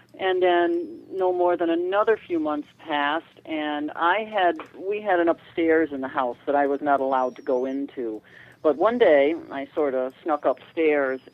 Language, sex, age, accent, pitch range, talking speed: English, male, 40-59, American, 135-180 Hz, 185 wpm